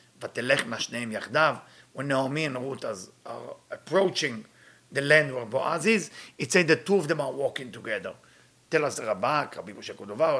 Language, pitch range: English, 95-160 Hz